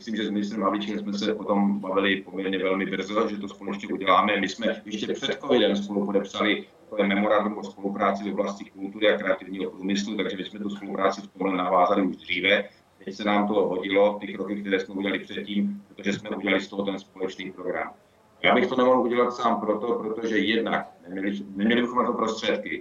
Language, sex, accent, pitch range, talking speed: Czech, male, native, 100-110 Hz, 200 wpm